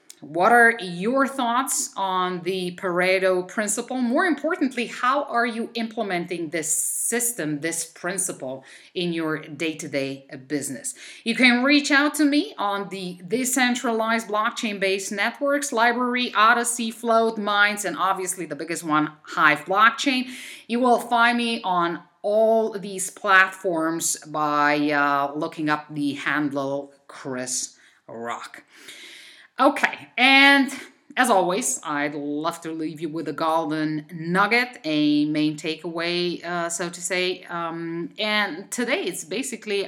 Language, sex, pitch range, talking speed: English, female, 155-225 Hz, 130 wpm